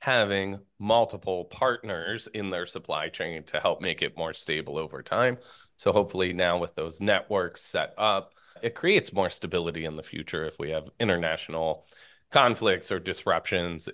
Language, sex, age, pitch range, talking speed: English, male, 30-49, 95-140 Hz, 160 wpm